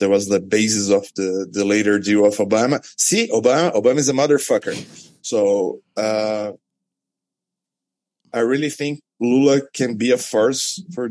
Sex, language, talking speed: male, English, 150 wpm